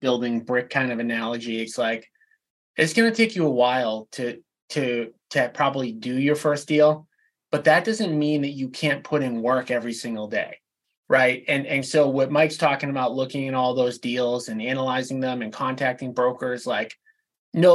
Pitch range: 125-160 Hz